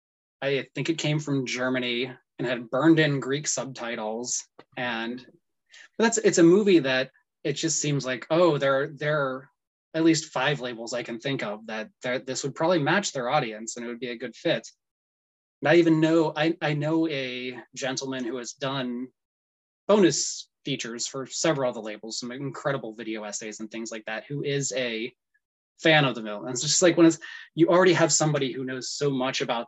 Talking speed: 200 wpm